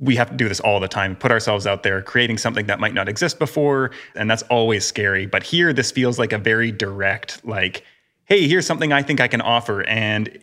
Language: English